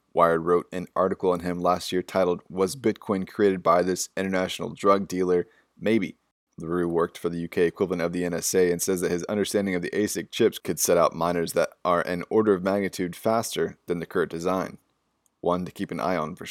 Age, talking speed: 20-39, 210 wpm